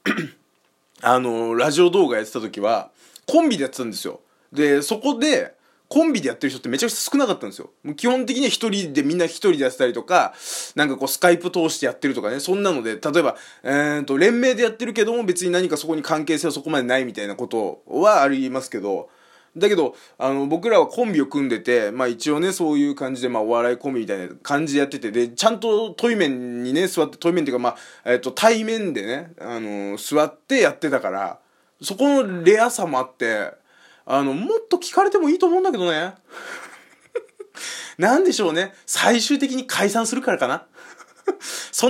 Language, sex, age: Japanese, male, 20-39